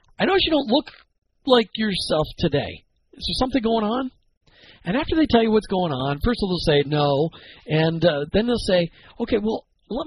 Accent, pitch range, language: American, 150-215 Hz, English